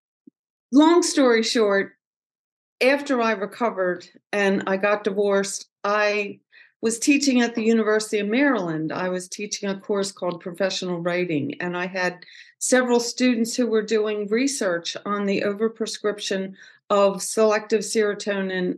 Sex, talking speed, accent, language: female, 130 wpm, American, English